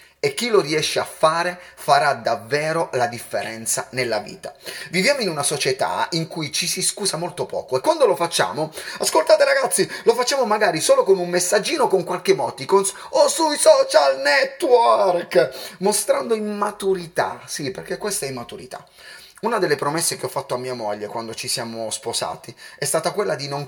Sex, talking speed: male, 170 wpm